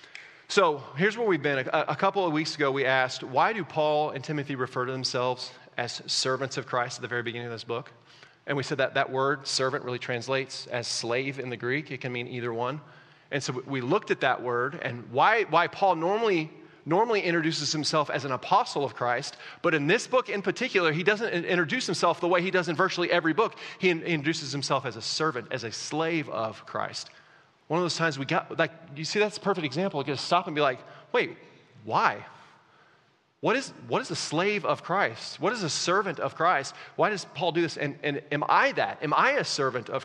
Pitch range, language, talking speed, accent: 130-165 Hz, English, 225 wpm, American